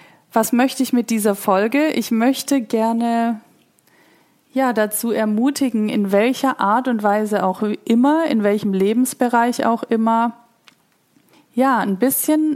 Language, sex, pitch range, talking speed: German, female, 205-245 Hz, 130 wpm